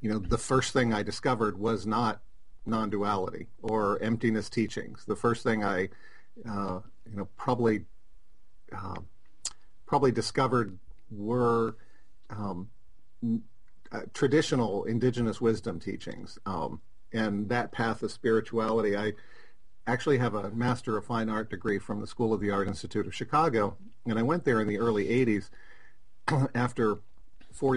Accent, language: American, English